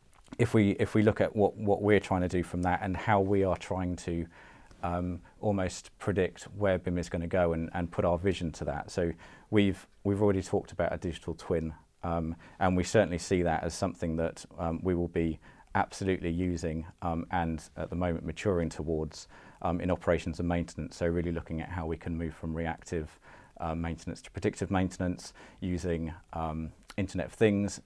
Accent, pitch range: British, 85-95 Hz